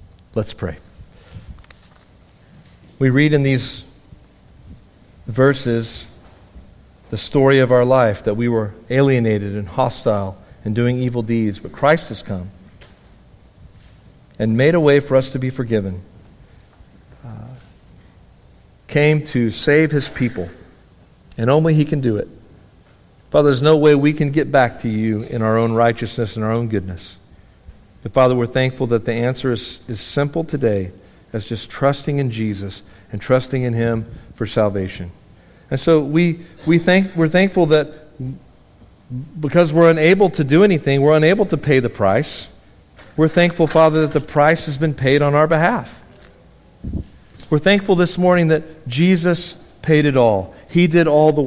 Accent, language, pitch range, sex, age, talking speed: American, English, 110-155 Hz, male, 50-69, 155 wpm